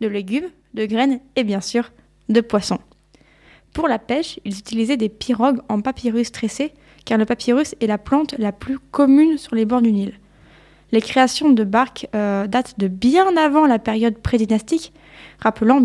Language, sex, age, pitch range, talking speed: French, female, 20-39, 215-265 Hz, 175 wpm